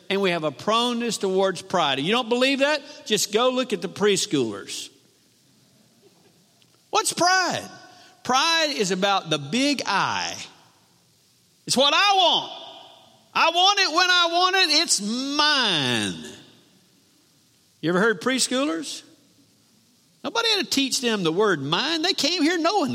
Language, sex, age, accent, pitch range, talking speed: English, male, 50-69, American, 190-305 Hz, 140 wpm